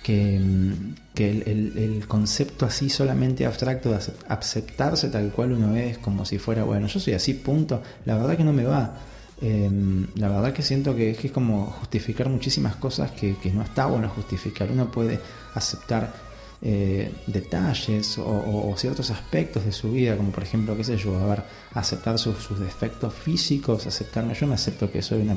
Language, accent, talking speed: Spanish, Argentinian, 185 wpm